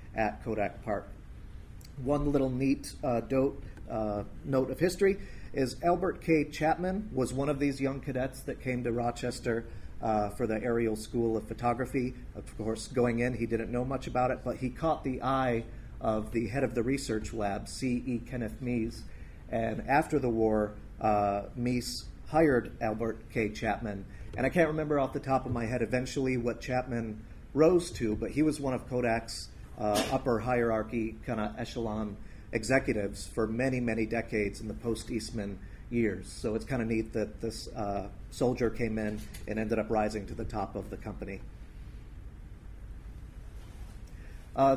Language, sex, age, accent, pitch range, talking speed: English, male, 40-59, American, 110-130 Hz, 170 wpm